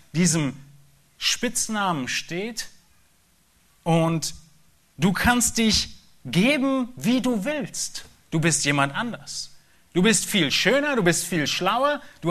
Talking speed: 115 wpm